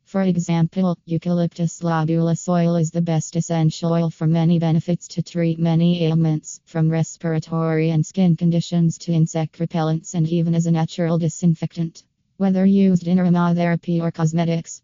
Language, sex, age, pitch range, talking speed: English, female, 20-39, 165-175 Hz, 150 wpm